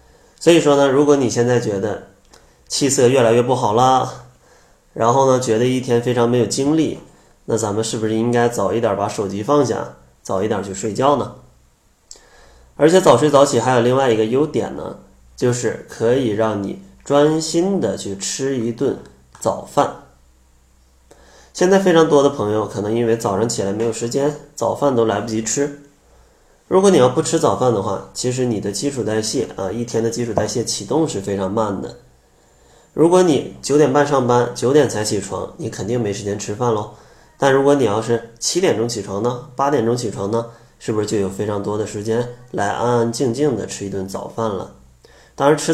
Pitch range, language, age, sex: 105-135 Hz, Chinese, 20-39, male